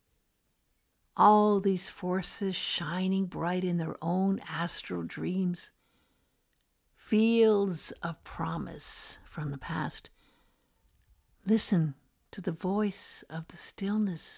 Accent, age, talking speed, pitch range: American, 60-79, 95 wpm, 160-210 Hz